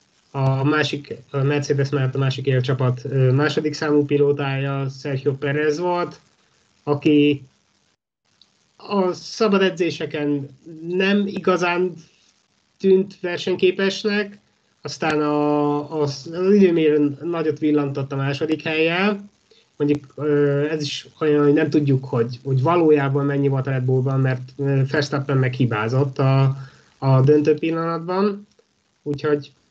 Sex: male